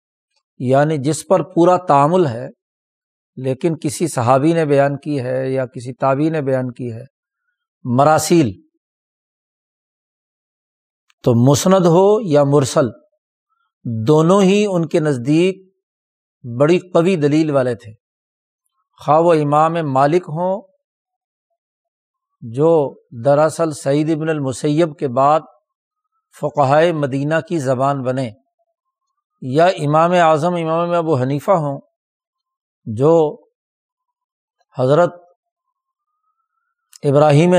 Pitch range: 140-195 Hz